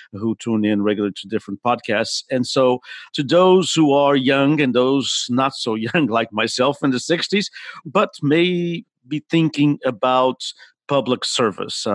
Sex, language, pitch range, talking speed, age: male, English, 110-140 Hz, 155 wpm, 50-69